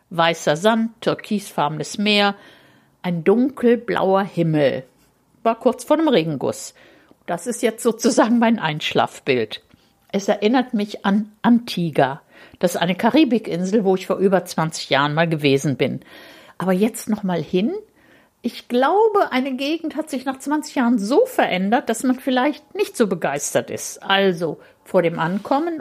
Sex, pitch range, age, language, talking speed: female, 175-245 Hz, 60-79, German, 145 wpm